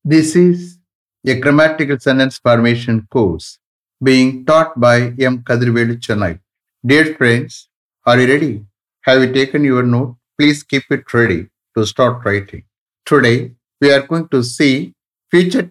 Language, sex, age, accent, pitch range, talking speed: English, male, 60-79, Indian, 120-155 Hz, 140 wpm